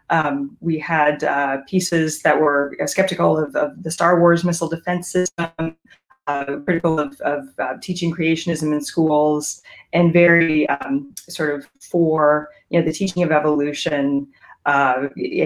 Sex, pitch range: female, 150-185 Hz